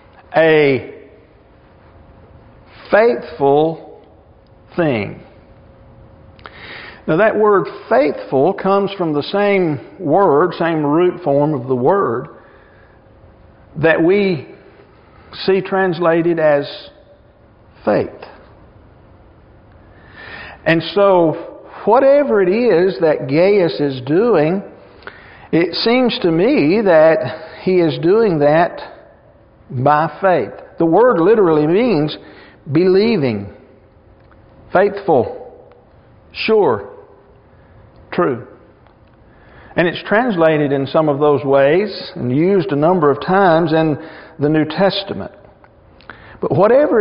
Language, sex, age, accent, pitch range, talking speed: English, male, 50-69, American, 135-190 Hz, 90 wpm